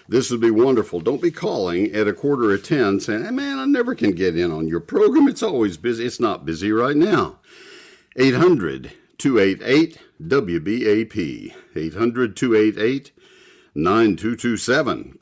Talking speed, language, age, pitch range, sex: 130 wpm, English, 60-79, 100-155 Hz, male